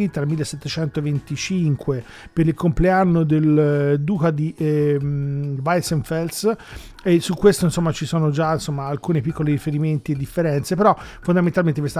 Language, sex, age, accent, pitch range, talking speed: Italian, male, 40-59, native, 145-175 Hz, 120 wpm